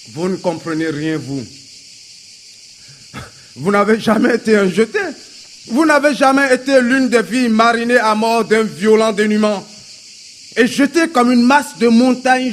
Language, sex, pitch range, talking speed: French, male, 155-225 Hz, 150 wpm